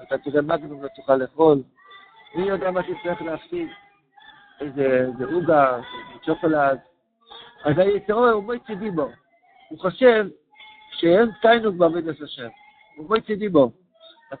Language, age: Hebrew, 60-79